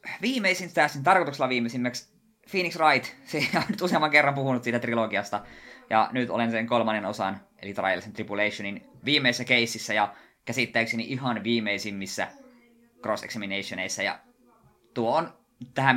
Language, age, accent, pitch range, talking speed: Finnish, 20-39, native, 105-130 Hz, 130 wpm